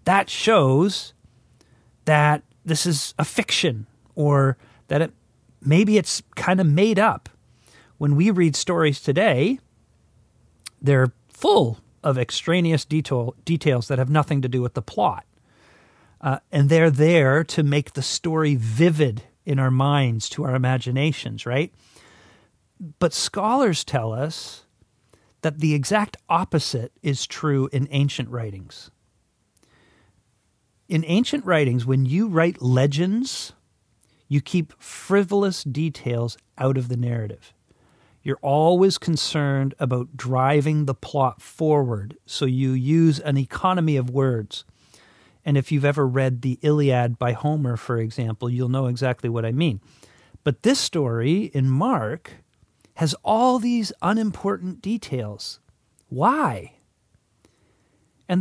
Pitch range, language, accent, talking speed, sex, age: 125-160 Hz, English, American, 125 wpm, male, 40-59